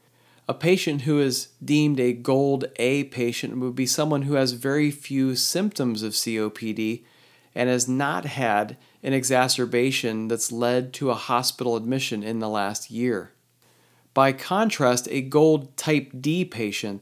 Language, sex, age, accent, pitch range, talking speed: English, male, 40-59, American, 115-140 Hz, 150 wpm